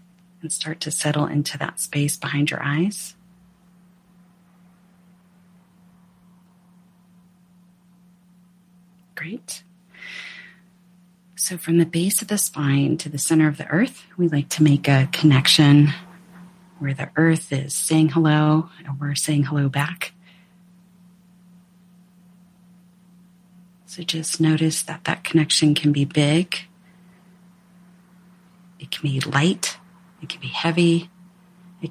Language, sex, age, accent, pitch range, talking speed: English, female, 40-59, American, 155-180 Hz, 110 wpm